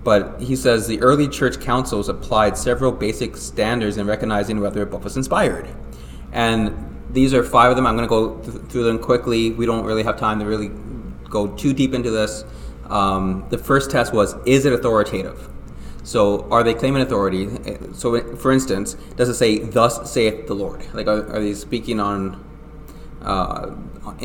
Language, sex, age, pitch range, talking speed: English, male, 30-49, 105-135 Hz, 180 wpm